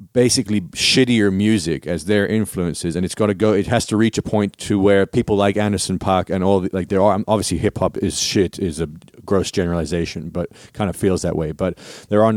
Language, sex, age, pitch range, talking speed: English, male, 40-59, 90-105 Hz, 220 wpm